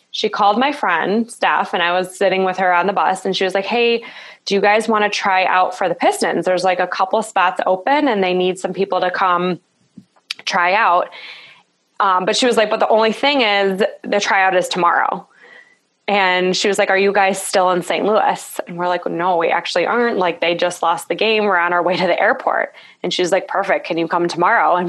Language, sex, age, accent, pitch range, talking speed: English, female, 20-39, American, 180-220 Hz, 240 wpm